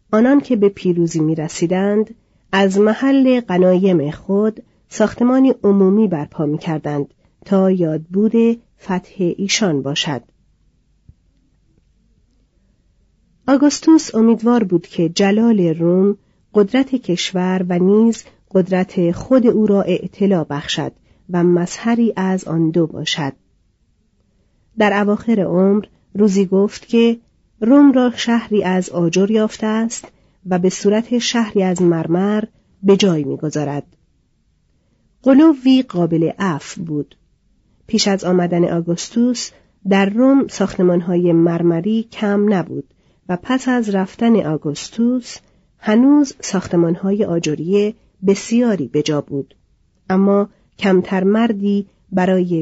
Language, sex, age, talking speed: Persian, female, 40-59, 105 wpm